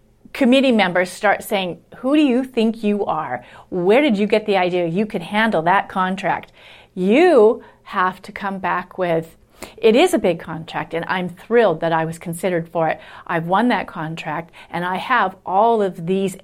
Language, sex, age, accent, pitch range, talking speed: English, female, 40-59, American, 180-230 Hz, 185 wpm